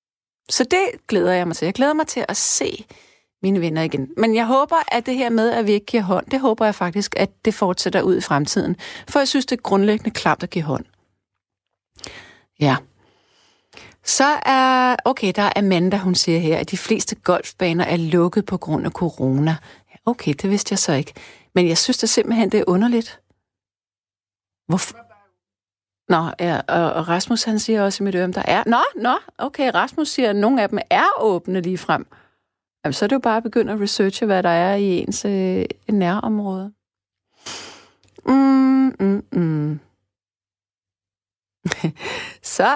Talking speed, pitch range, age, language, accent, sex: 175 wpm, 170-230 Hz, 40-59, Danish, native, female